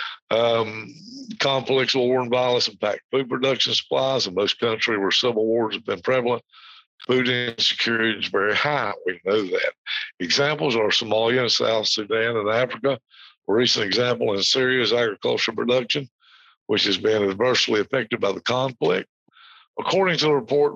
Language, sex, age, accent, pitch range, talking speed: English, male, 60-79, American, 100-130 Hz, 155 wpm